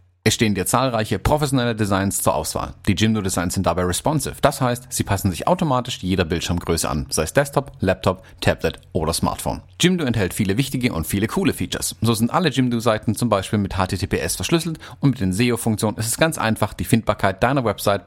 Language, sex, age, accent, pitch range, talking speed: German, male, 40-59, German, 95-125 Hz, 195 wpm